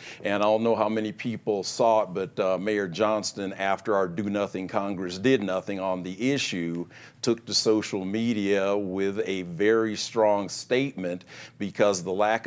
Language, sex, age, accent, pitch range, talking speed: English, male, 50-69, American, 100-115 Hz, 170 wpm